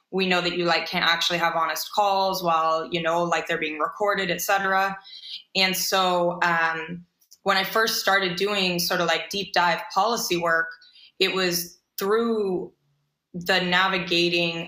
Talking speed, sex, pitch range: 160 wpm, female, 175-195 Hz